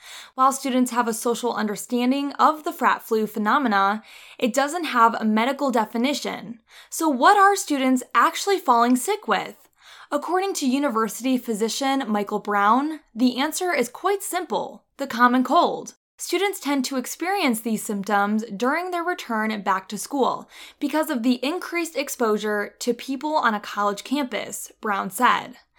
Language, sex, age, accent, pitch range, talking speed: English, female, 10-29, American, 220-285 Hz, 150 wpm